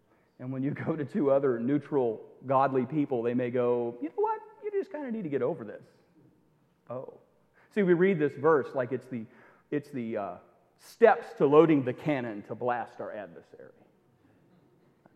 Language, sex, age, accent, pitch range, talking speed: English, male, 40-59, American, 135-200 Hz, 185 wpm